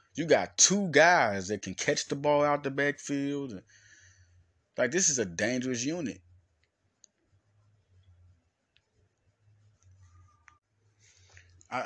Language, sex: English, male